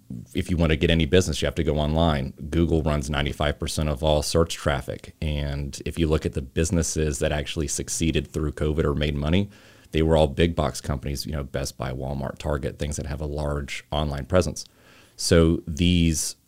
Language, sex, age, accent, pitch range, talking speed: English, male, 30-49, American, 75-80 Hz, 200 wpm